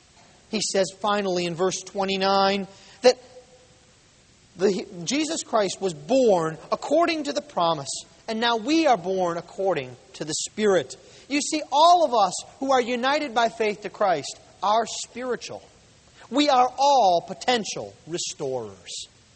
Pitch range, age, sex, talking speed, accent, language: 185-285 Hz, 40-59, male, 135 wpm, American, English